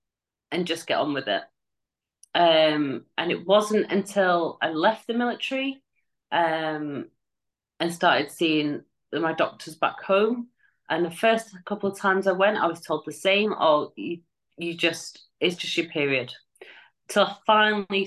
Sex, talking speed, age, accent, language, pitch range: female, 155 wpm, 30-49, British, English, 170-235 Hz